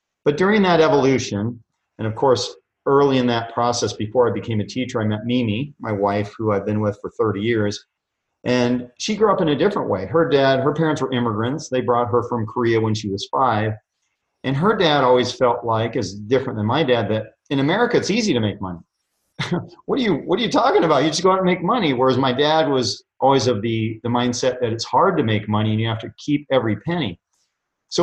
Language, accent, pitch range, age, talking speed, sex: English, American, 110-140 Hz, 40-59, 230 wpm, male